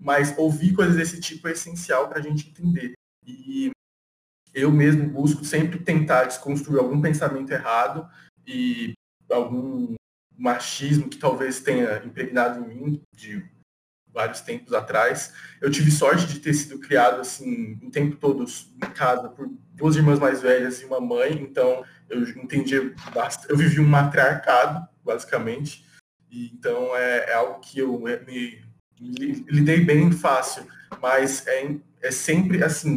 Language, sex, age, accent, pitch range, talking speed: Portuguese, male, 20-39, Brazilian, 130-165 Hz, 145 wpm